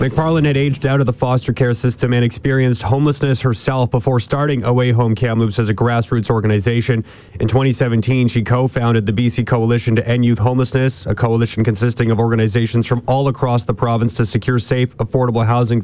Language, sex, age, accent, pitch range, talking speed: English, male, 30-49, American, 110-125 Hz, 180 wpm